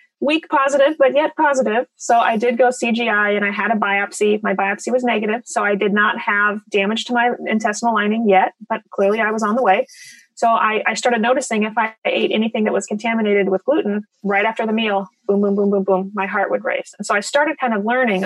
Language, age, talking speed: English, 30-49, 235 wpm